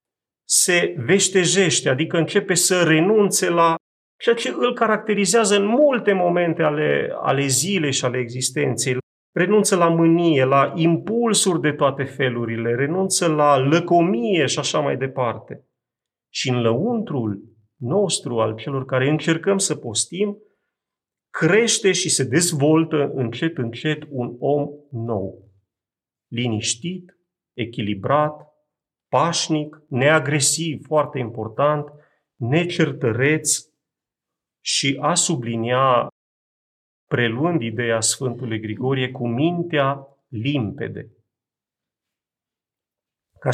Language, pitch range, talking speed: Romanian, 125-175 Hz, 100 wpm